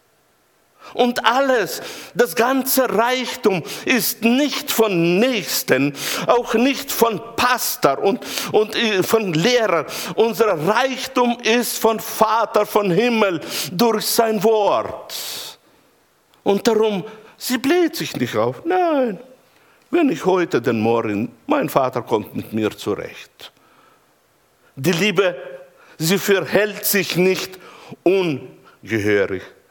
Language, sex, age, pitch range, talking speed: German, male, 60-79, 155-240 Hz, 105 wpm